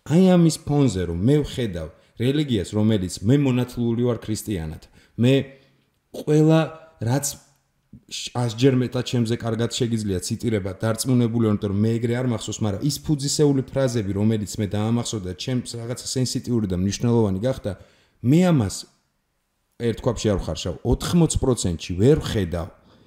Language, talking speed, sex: English, 85 wpm, male